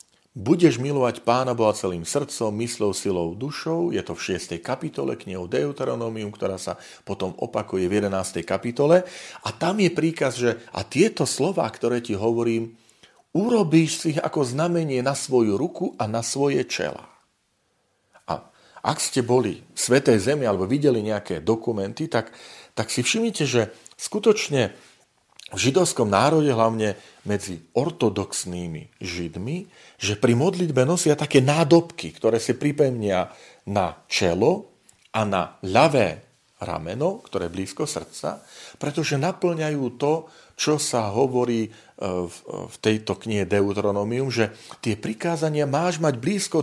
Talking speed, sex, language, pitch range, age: 135 wpm, male, Slovak, 105-155 Hz, 40-59